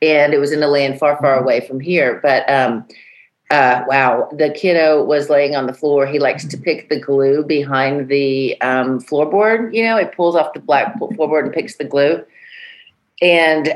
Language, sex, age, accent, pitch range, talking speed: English, female, 40-59, American, 145-200 Hz, 195 wpm